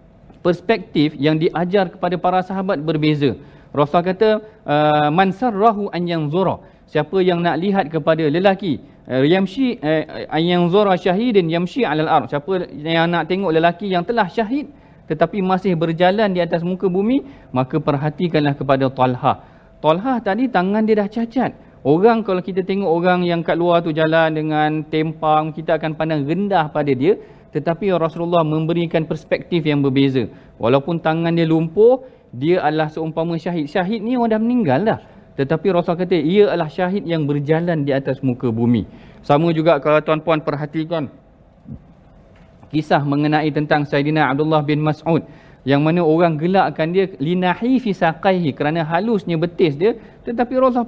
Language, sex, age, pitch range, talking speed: Malayalam, male, 40-59, 155-190 Hz, 150 wpm